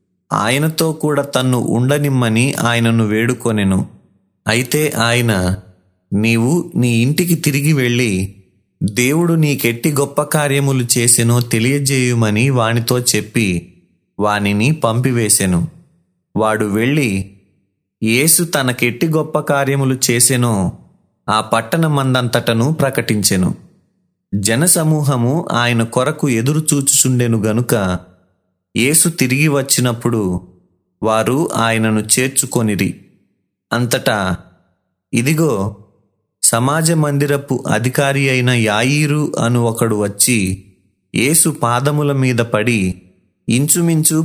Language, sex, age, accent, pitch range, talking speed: Telugu, male, 30-49, native, 105-140 Hz, 75 wpm